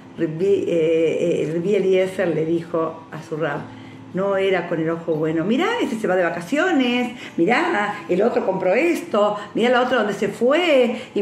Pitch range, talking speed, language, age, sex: 180-235 Hz, 170 wpm, Spanish, 50-69, female